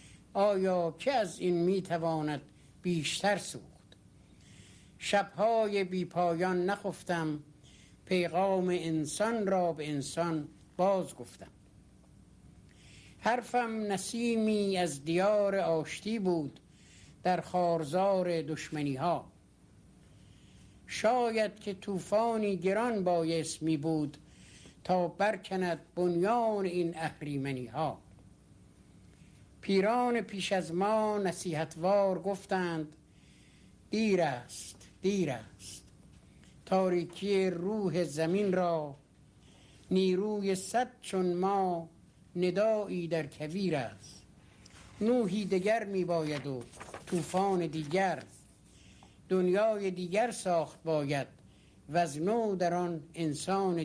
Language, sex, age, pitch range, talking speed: Persian, male, 60-79, 155-195 Hz, 85 wpm